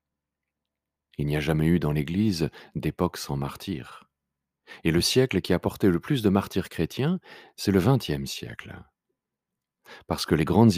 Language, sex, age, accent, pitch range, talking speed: French, male, 40-59, French, 75-100 Hz, 160 wpm